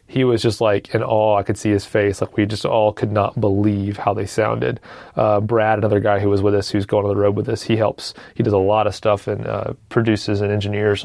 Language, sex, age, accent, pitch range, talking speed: English, male, 30-49, American, 105-125 Hz, 265 wpm